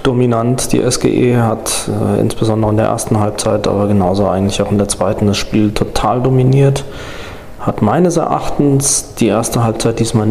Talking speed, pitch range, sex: 165 wpm, 110-130 Hz, male